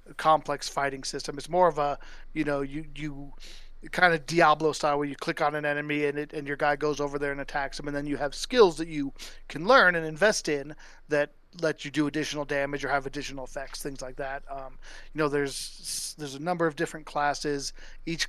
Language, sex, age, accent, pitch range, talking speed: English, male, 40-59, American, 140-155 Hz, 225 wpm